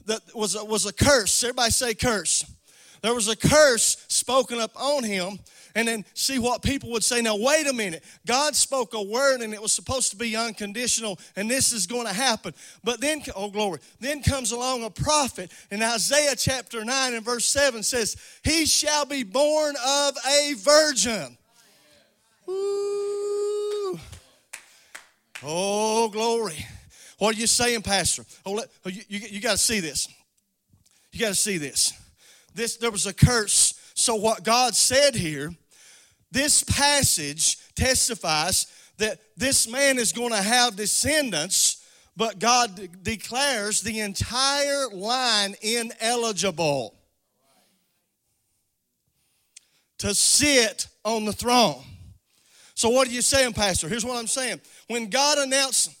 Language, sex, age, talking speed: English, male, 40-59, 140 wpm